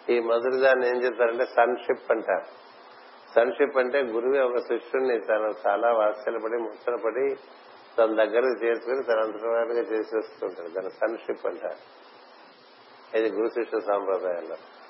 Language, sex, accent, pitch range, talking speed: Telugu, male, native, 115-145 Hz, 115 wpm